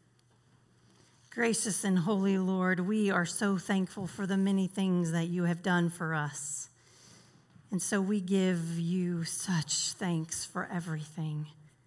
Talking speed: 135 wpm